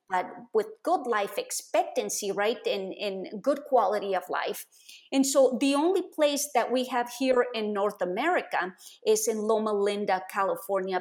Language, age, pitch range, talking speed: English, 30-49, 215-285 Hz, 160 wpm